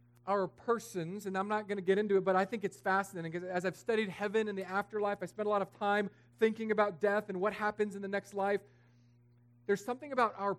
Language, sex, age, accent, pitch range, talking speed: English, male, 40-59, American, 120-185 Hz, 245 wpm